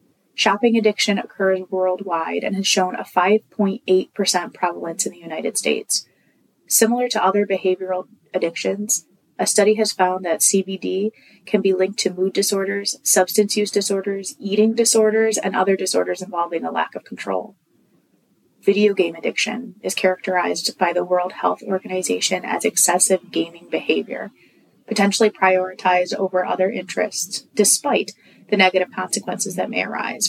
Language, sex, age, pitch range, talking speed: English, female, 20-39, 185-210 Hz, 140 wpm